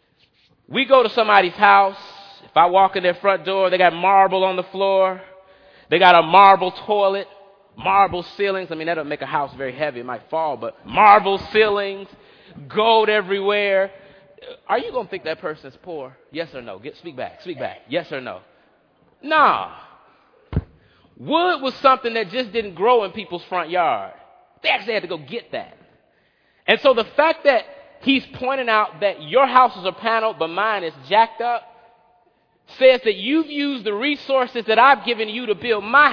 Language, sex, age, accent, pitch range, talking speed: English, male, 30-49, American, 190-255 Hz, 185 wpm